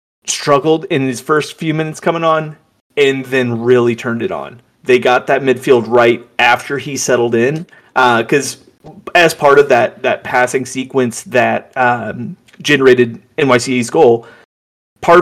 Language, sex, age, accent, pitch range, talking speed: English, male, 30-49, American, 120-145 Hz, 150 wpm